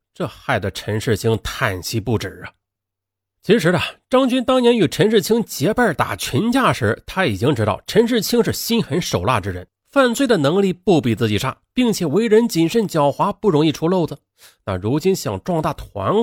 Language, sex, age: Chinese, male, 30-49